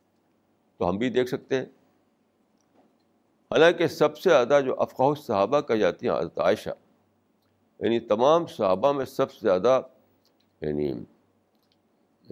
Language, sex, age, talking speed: Urdu, male, 60-79, 130 wpm